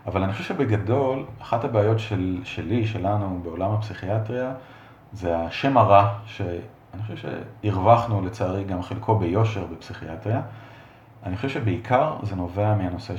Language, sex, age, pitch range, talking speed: English, male, 40-59, 95-125 Hz, 125 wpm